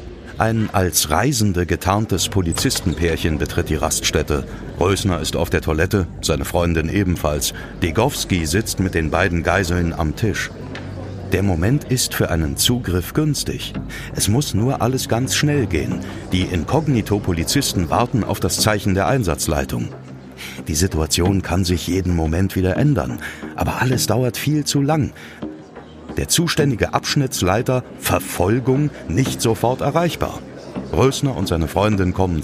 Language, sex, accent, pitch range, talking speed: German, male, German, 85-110 Hz, 135 wpm